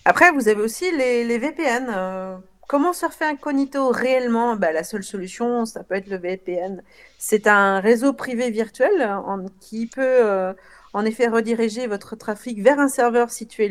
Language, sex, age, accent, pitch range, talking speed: French, female, 40-59, French, 200-255 Hz, 165 wpm